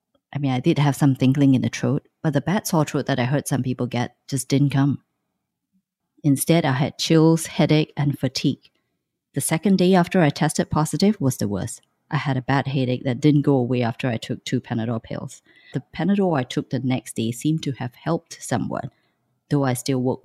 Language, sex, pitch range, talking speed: English, female, 130-165 Hz, 215 wpm